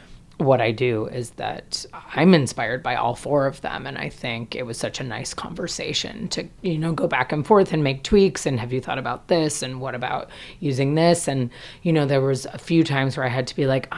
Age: 30-49